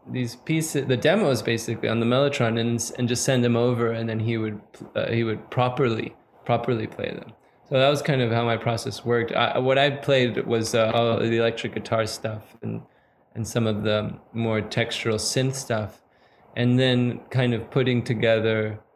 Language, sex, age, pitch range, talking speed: English, male, 20-39, 120-140 Hz, 190 wpm